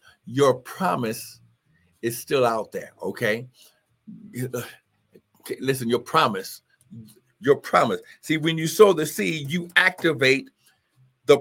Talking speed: 110 wpm